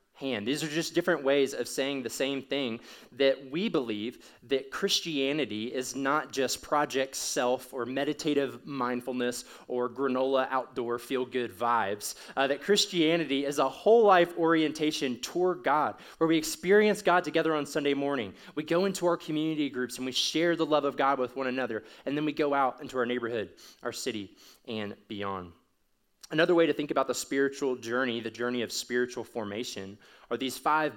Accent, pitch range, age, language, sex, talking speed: American, 125-155 Hz, 20-39, English, male, 170 wpm